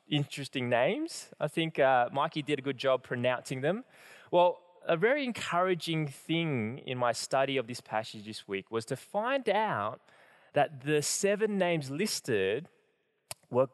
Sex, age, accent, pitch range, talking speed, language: male, 20-39, Australian, 130-170 Hz, 155 wpm, English